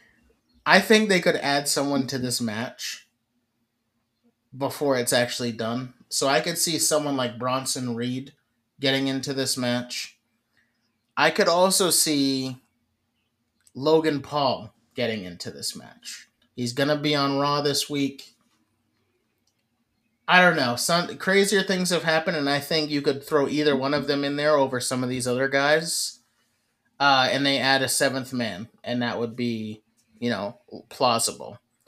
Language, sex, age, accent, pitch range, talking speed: English, male, 30-49, American, 120-150 Hz, 155 wpm